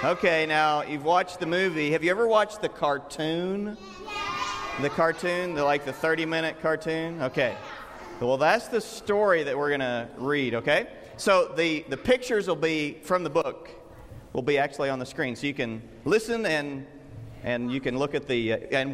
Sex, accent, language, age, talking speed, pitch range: male, American, English, 40-59, 180 wpm, 125-195 Hz